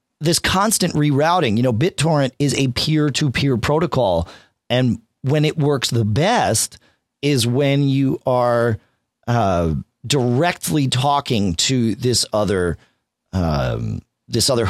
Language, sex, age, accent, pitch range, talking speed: English, male, 40-59, American, 100-145 Hz, 125 wpm